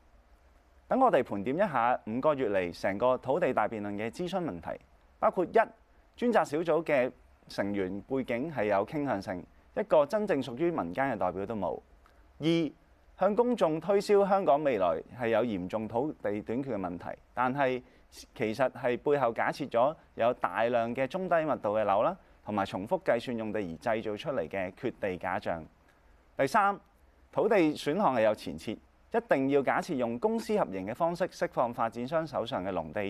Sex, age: male, 30-49